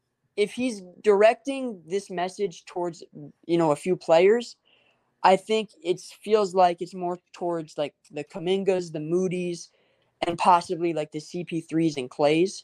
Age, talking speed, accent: 20-39, 150 wpm, American